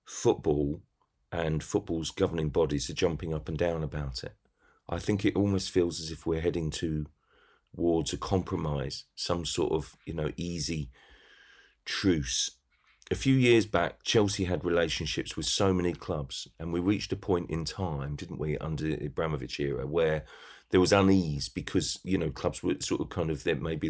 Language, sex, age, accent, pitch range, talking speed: English, male, 40-59, British, 75-95 Hz, 175 wpm